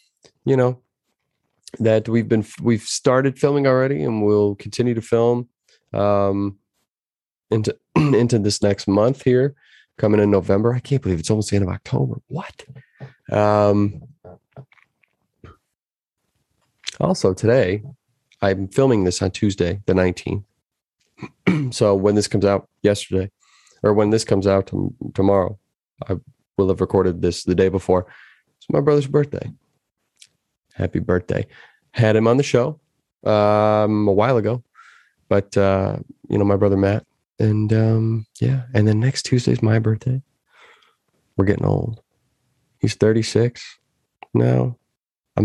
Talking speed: 135 wpm